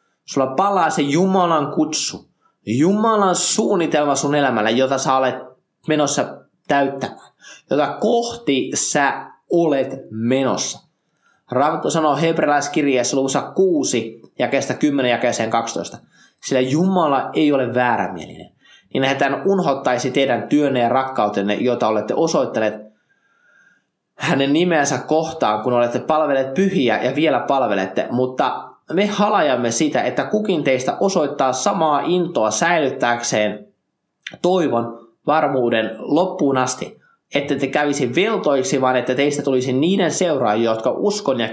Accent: native